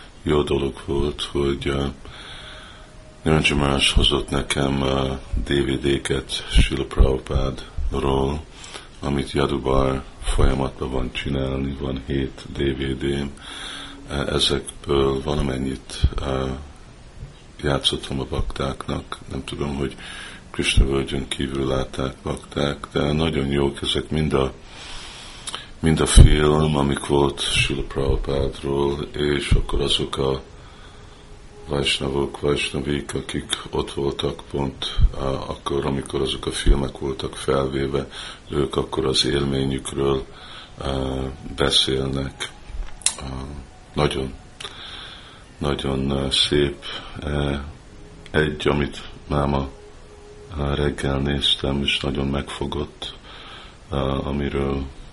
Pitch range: 65-70 Hz